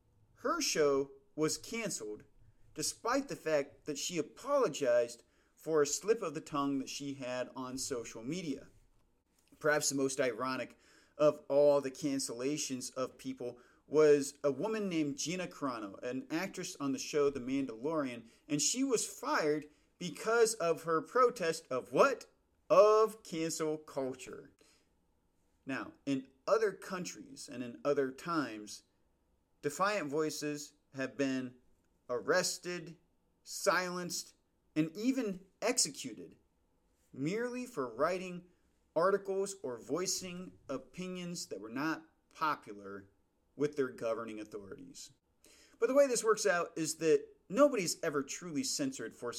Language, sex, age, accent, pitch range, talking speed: English, male, 40-59, American, 130-180 Hz, 125 wpm